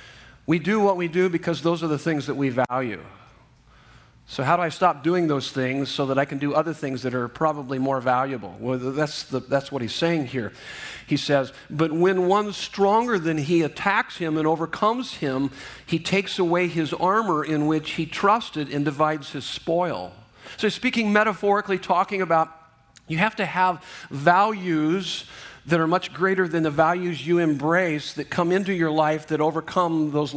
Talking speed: 185 wpm